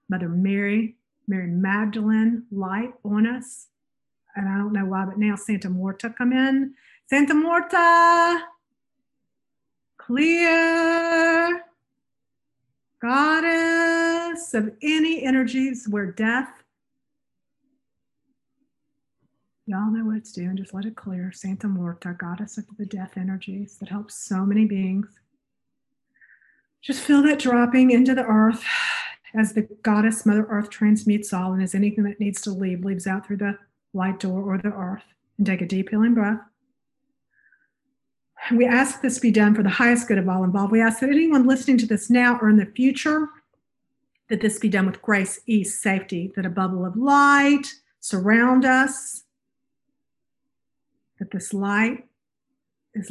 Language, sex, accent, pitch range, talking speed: English, female, American, 195-265 Hz, 145 wpm